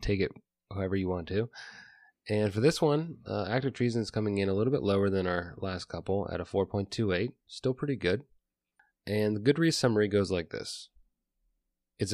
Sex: male